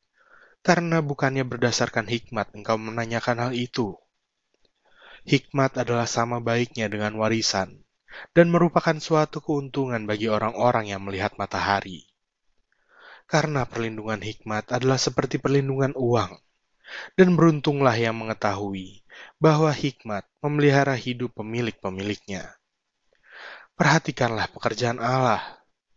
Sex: male